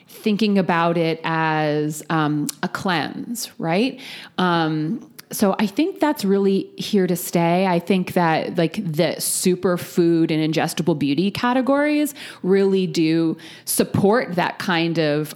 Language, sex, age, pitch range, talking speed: English, female, 30-49, 160-200 Hz, 135 wpm